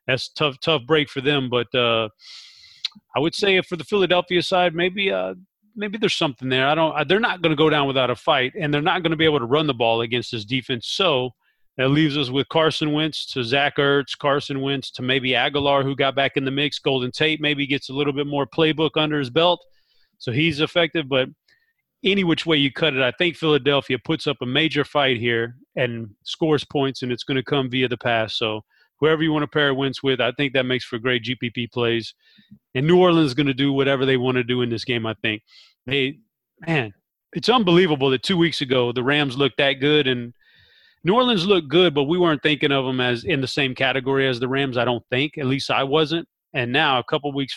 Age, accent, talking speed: 30-49, American, 240 wpm